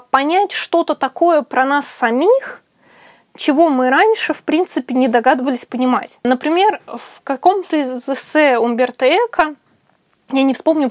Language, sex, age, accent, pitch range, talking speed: Russian, female, 20-39, native, 250-340 Hz, 130 wpm